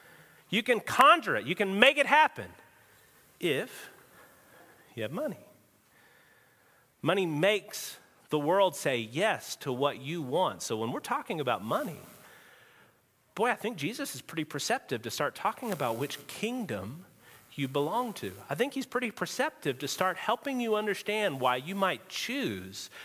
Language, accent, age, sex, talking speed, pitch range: English, American, 40-59, male, 155 wpm, 145-215 Hz